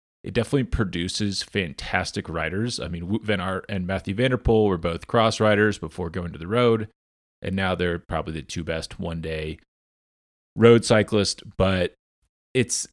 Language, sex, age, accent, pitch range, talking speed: English, male, 30-49, American, 85-110 Hz, 160 wpm